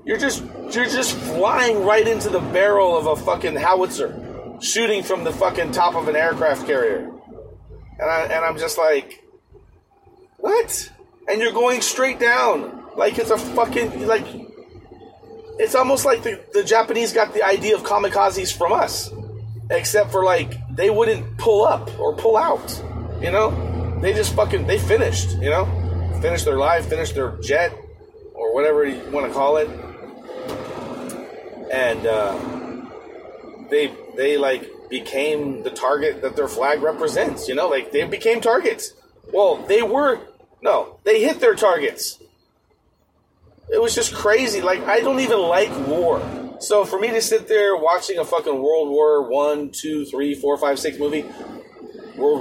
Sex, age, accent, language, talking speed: male, 30-49, American, English, 160 wpm